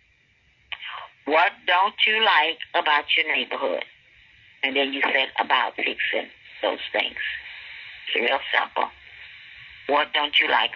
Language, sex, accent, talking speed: English, female, American, 125 wpm